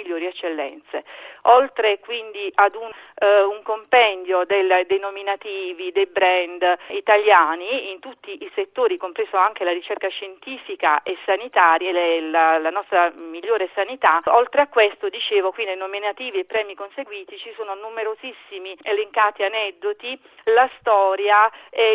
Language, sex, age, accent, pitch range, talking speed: Italian, female, 40-59, native, 185-250 Hz, 135 wpm